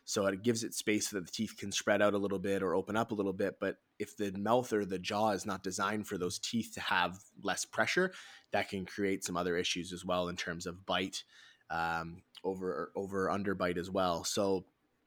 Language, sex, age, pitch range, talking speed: English, male, 20-39, 90-105 Hz, 235 wpm